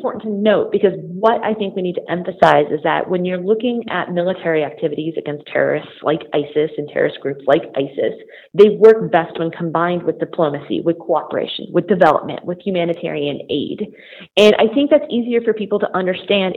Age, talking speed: 30-49, 180 wpm